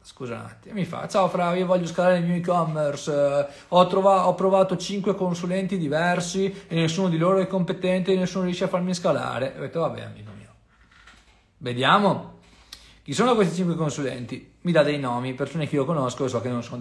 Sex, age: male, 40-59